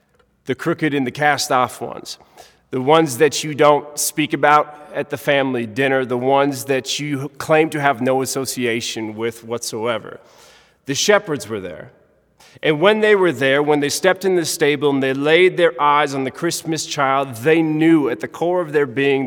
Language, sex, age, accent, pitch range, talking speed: English, male, 30-49, American, 130-160 Hz, 185 wpm